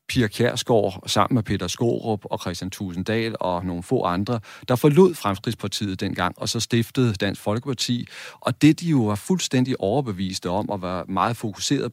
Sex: male